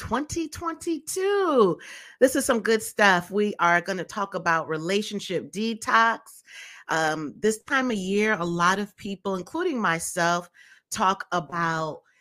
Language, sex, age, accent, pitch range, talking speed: English, female, 30-49, American, 170-230 Hz, 135 wpm